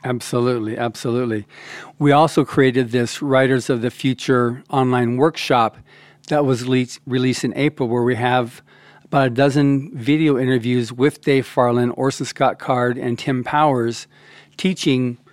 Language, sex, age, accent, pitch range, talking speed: English, male, 50-69, American, 125-140 Hz, 135 wpm